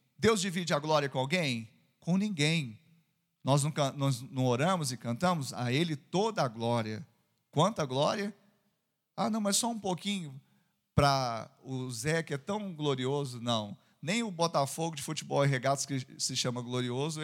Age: 40-59